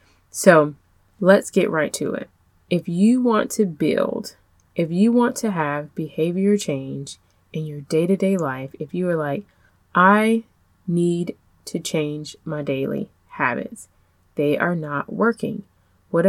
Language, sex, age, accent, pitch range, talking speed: English, female, 20-39, American, 150-190 Hz, 140 wpm